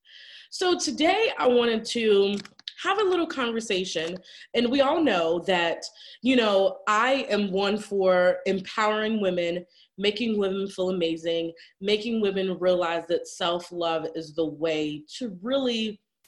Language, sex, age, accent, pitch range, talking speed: English, female, 20-39, American, 170-240 Hz, 135 wpm